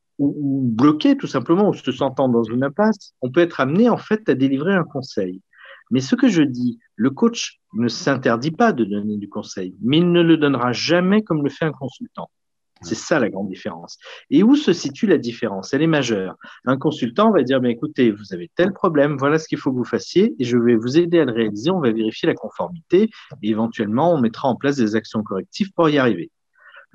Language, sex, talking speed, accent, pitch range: French, male, 225 wpm, French, 115-185 Hz